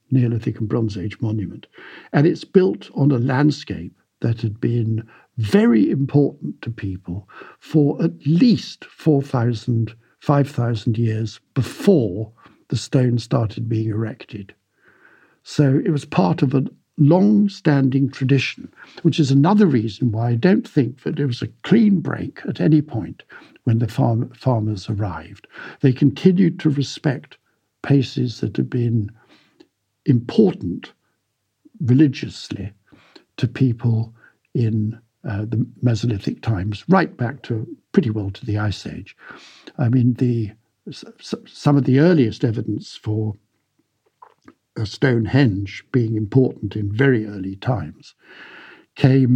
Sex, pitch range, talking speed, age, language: male, 110-140 Hz, 125 wpm, 60-79, English